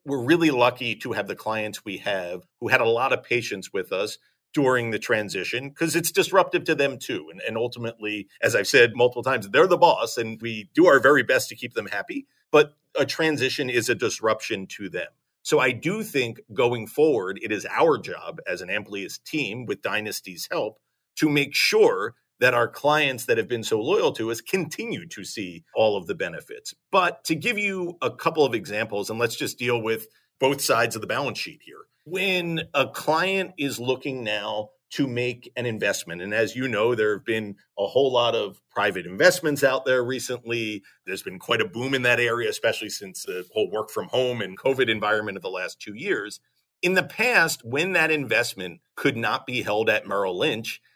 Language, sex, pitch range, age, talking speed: English, male, 120-180 Hz, 40-59, 205 wpm